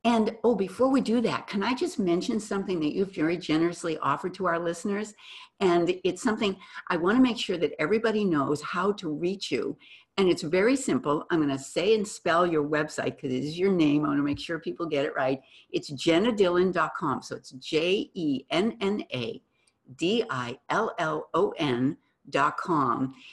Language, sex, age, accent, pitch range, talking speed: English, female, 60-79, American, 150-220 Hz, 195 wpm